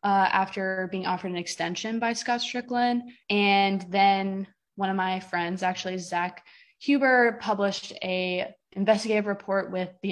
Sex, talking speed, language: female, 140 wpm, English